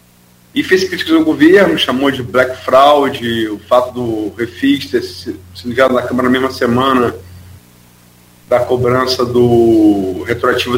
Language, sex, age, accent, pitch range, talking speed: Portuguese, male, 40-59, Brazilian, 95-145 Hz, 140 wpm